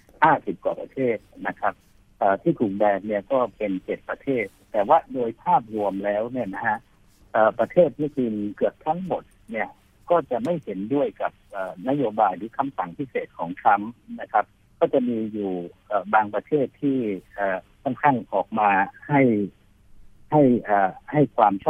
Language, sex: Thai, male